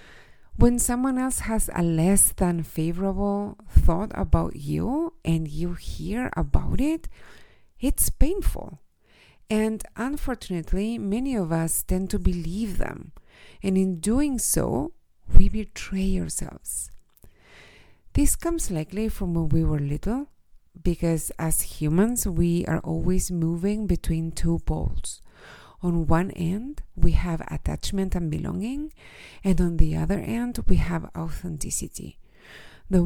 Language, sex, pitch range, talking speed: English, female, 165-220 Hz, 125 wpm